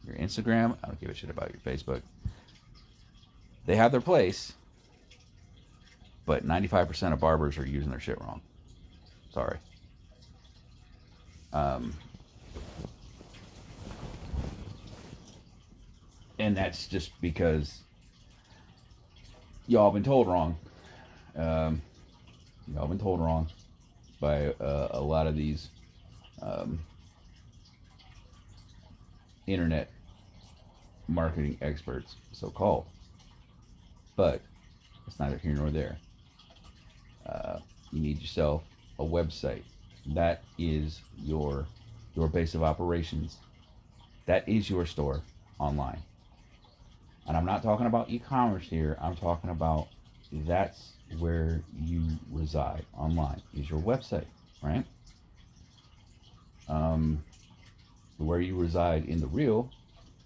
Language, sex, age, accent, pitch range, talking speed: English, male, 40-59, American, 75-100 Hz, 100 wpm